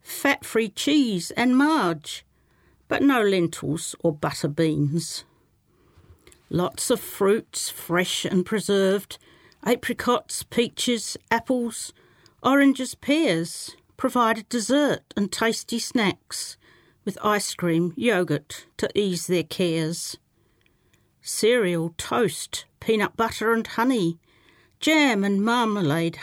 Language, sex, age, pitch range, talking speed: English, female, 50-69, 170-230 Hz, 100 wpm